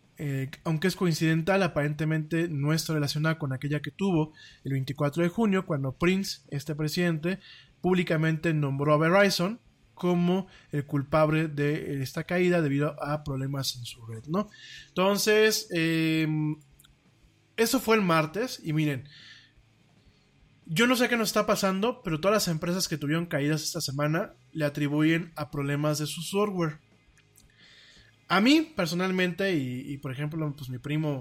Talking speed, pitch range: 150 wpm, 145-185 Hz